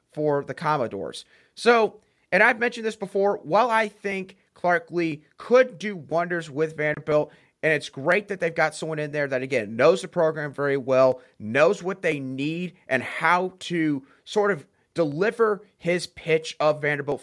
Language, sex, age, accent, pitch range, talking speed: English, male, 30-49, American, 145-180 Hz, 170 wpm